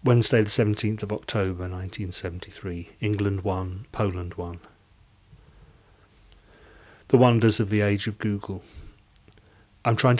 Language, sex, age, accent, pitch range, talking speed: English, male, 30-49, British, 95-110 Hz, 120 wpm